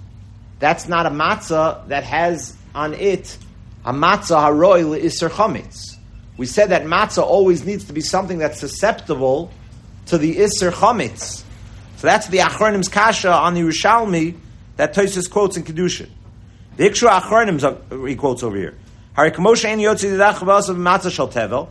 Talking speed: 135 wpm